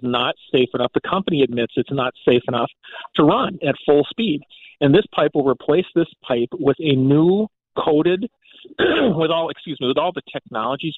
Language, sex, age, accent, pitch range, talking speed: English, male, 40-59, American, 130-175 Hz, 185 wpm